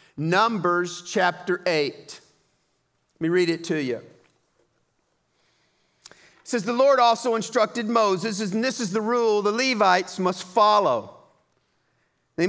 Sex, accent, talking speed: male, American, 125 wpm